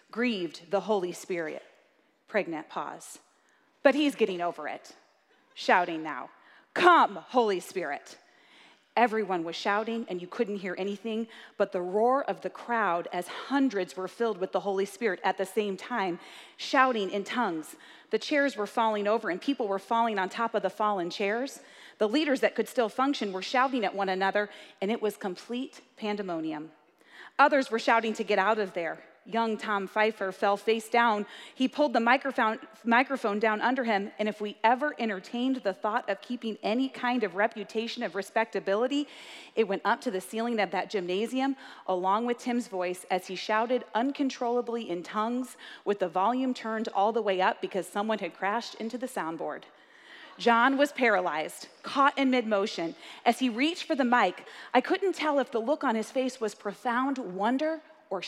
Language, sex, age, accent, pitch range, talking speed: English, female, 30-49, American, 195-250 Hz, 175 wpm